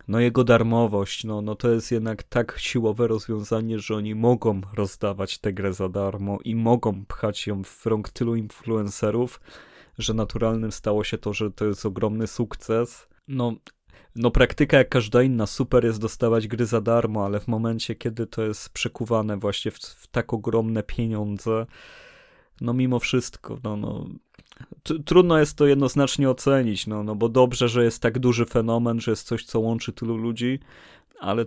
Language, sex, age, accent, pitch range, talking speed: Polish, male, 20-39, native, 105-120 Hz, 170 wpm